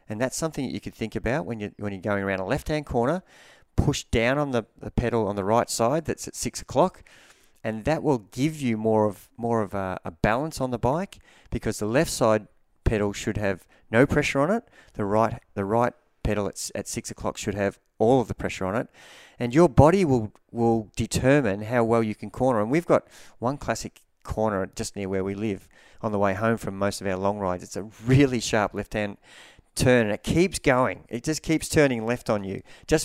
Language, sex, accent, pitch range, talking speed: English, male, Australian, 100-125 Hz, 225 wpm